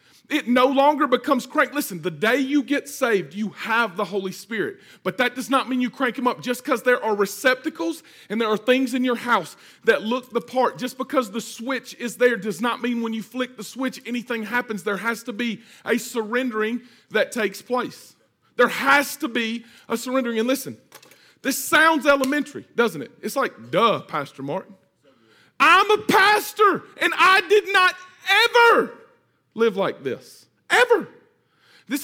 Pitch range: 240-320 Hz